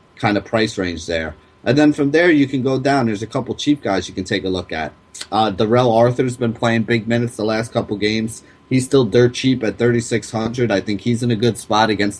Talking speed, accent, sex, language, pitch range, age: 240 wpm, American, male, English, 100-120 Hz, 30-49